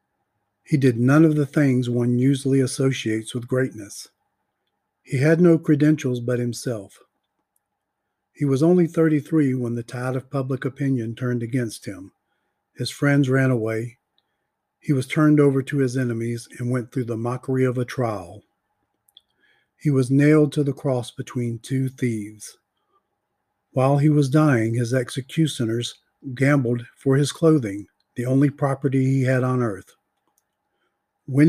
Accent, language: American, English